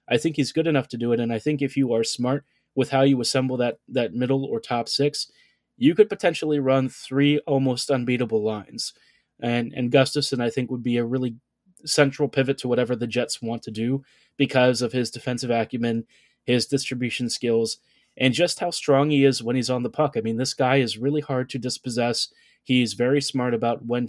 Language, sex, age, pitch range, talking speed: English, male, 20-39, 120-140 Hz, 210 wpm